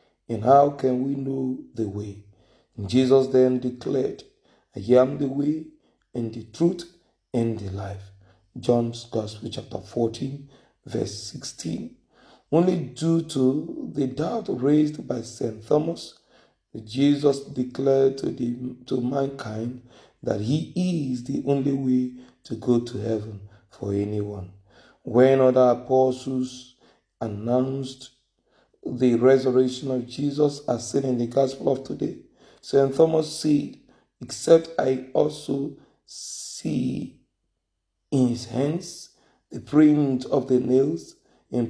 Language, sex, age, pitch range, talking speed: English, male, 40-59, 120-140 Hz, 120 wpm